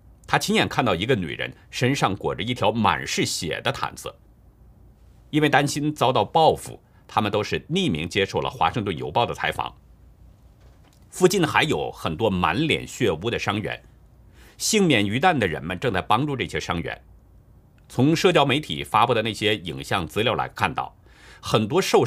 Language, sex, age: Chinese, male, 50-69